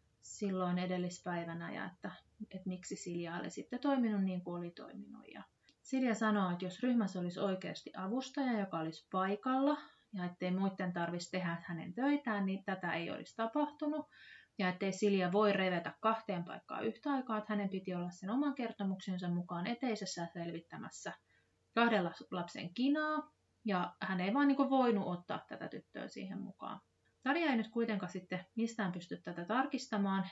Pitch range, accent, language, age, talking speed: 175-225 Hz, native, Finnish, 30-49, 160 wpm